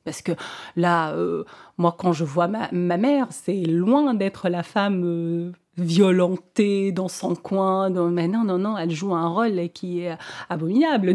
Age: 40-59